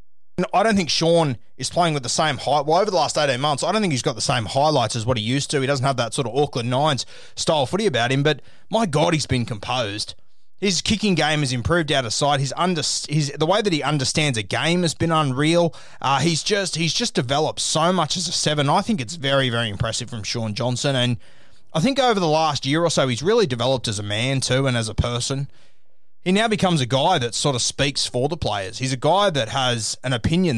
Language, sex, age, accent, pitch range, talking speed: English, male, 20-39, Australian, 120-155 Hz, 250 wpm